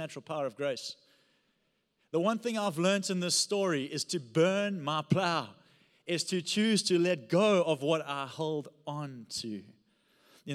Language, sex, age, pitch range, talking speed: English, male, 30-49, 140-180 Hz, 170 wpm